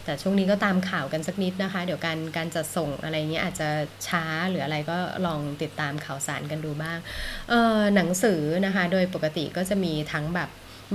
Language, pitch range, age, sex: Thai, 155-195 Hz, 20-39, female